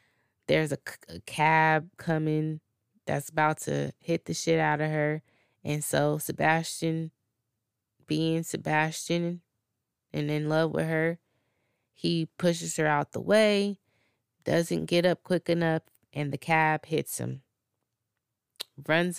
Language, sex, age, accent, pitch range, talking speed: English, female, 20-39, American, 135-175 Hz, 130 wpm